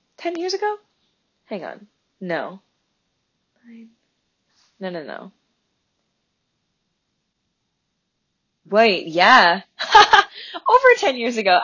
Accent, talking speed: American, 75 wpm